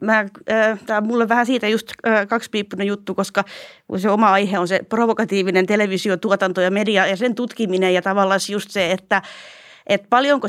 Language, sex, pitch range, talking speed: Finnish, female, 180-220 Hz, 170 wpm